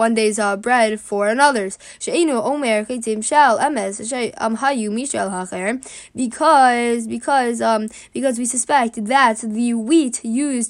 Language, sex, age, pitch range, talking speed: English, female, 10-29, 215-260 Hz, 90 wpm